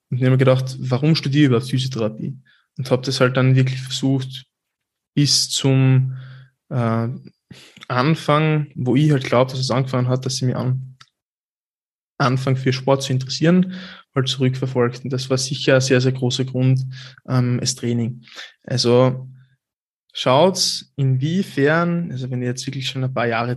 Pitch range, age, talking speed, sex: 125-140 Hz, 20-39, 165 wpm, male